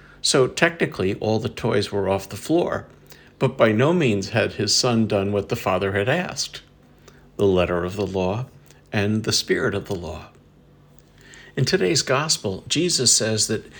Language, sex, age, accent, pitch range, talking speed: English, male, 60-79, American, 100-130 Hz, 170 wpm